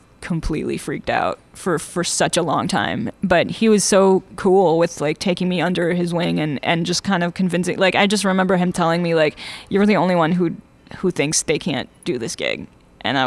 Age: 10-29